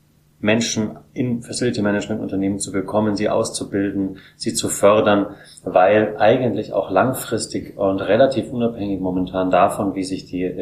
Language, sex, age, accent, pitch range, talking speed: German, male, 30-49, German, 95-115 Hz, 135 wpm